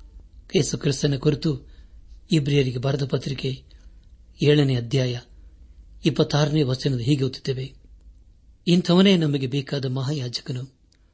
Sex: male